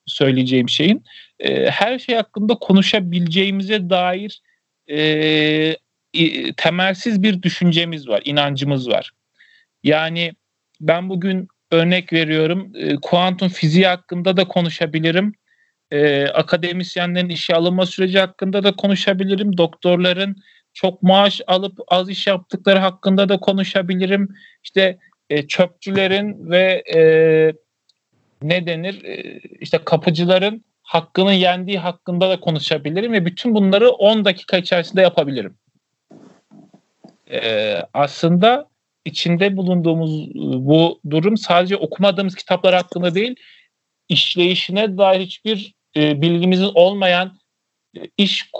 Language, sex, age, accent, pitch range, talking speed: Turkish, male, 40-59, native, 165-195 Hz, 95 wpm